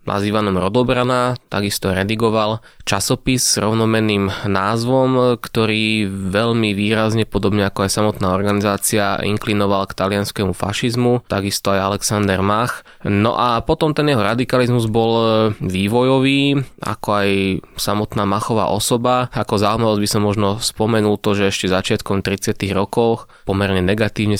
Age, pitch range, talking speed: 20-39, 100-115 Hz, 125 wpm